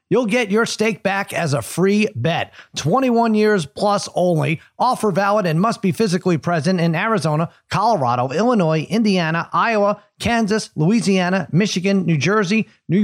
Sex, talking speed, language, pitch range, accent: male, 145 wpm, English, 170-220 Hz, American